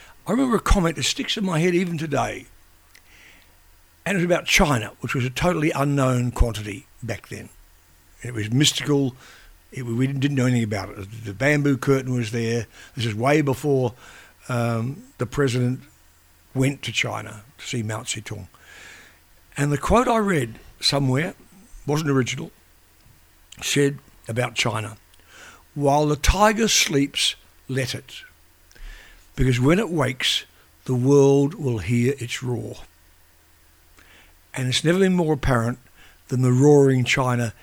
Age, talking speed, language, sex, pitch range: 60-79, 140 wpm, English, male, 110-145 Hz